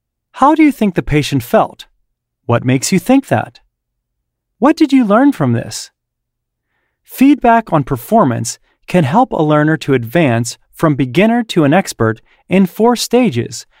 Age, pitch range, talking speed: 30-49, 130-205 Hz, 150 wpm